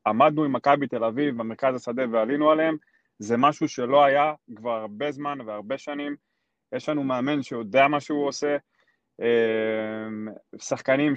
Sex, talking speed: male, 140 wpm